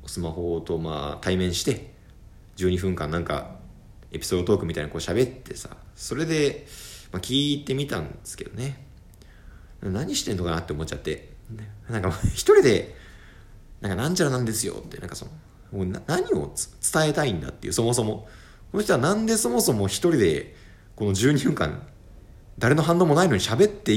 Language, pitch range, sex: Japanese, 95-145 Hz, male